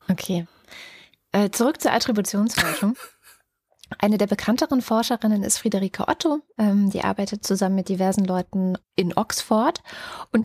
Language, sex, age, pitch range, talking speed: German, female, 20-39, 180-215 Hz, 115 wpm